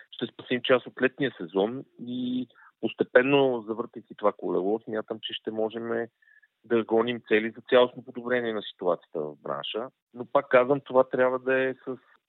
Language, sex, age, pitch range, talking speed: Bulgarian, male, 40-59, 115-135 Hz, 160 wpm